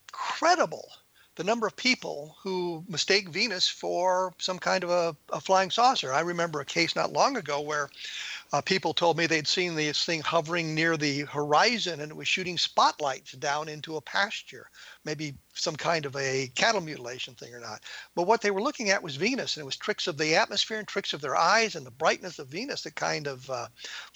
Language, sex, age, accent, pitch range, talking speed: English, male, 50-69, American, 155-195 Hz, 210 wpm